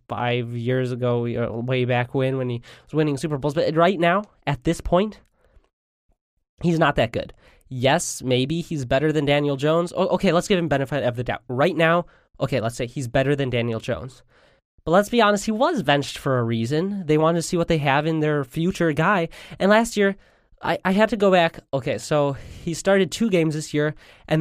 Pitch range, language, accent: 130-170 Hz, English, American